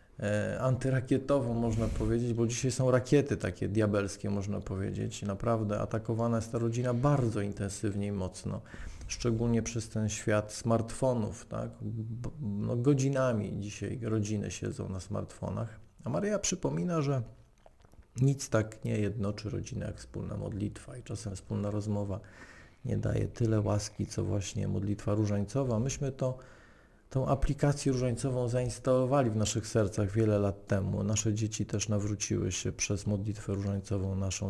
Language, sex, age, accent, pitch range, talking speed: Polish, male, 40-59, native, 100-120 Hz, 135 wpm